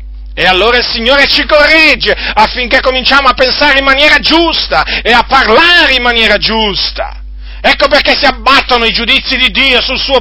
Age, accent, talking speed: 40-59, native, 170 wpm